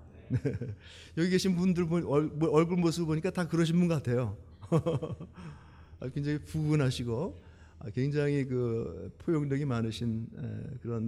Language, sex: Korean, male